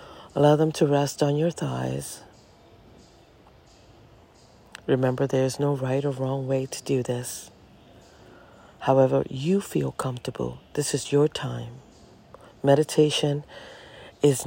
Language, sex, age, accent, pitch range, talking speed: English, female, 40-59, American, 120-145 Hz, 115 wpm